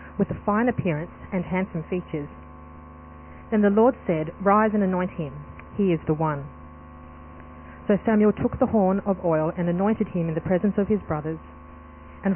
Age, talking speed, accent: 40-59, 175 wpm, Australian